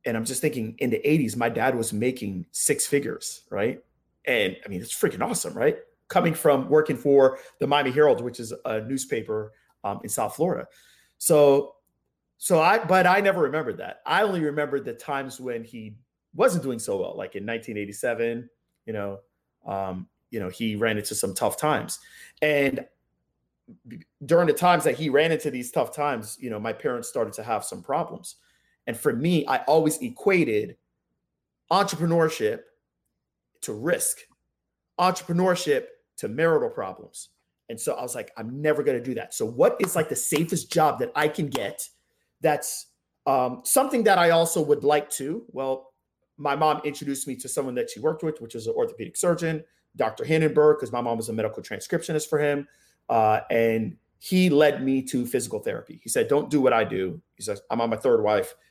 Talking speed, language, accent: 185 wpm, English, American